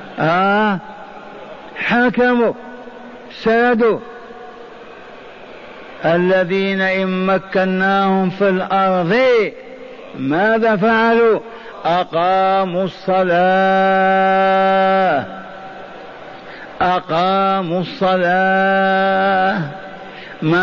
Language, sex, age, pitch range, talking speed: Arabic, male, 50-69, 175-220 Hz, 45 wpm